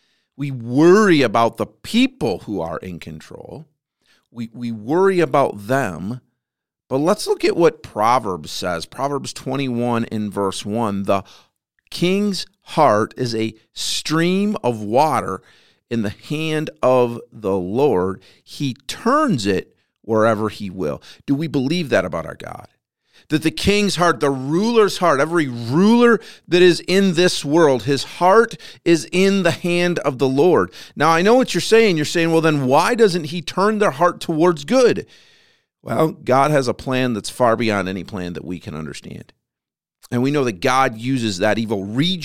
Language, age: English, 50-69